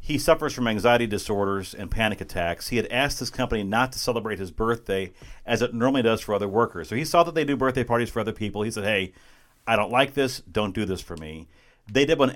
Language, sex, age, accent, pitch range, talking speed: English, male, 40-59, American, 100-125 Hz, 250 wpm